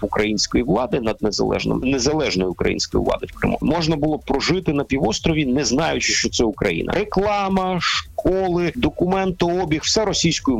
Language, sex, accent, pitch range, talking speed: Ukrainian, male, native, 110-170 Hz, 135 wpm